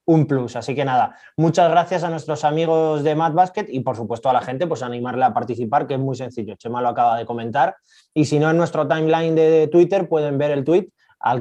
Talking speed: 240 wpm